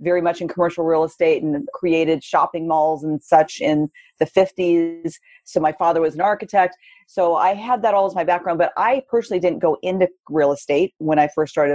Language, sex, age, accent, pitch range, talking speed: English, female, 40-59, American, 155-220 Hz, 210 wpm